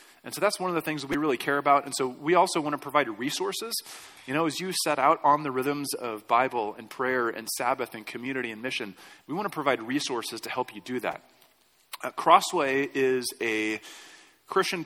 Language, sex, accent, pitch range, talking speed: English, male, American, 130-170 Hz, 215 wpm